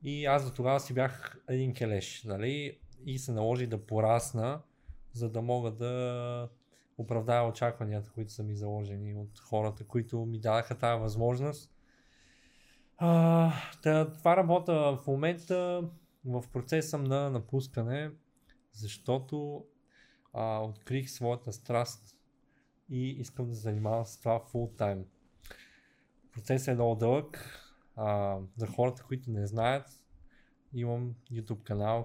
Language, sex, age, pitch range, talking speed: Bulgarian, male, 20-39, 115-140 Hz, 120 wpm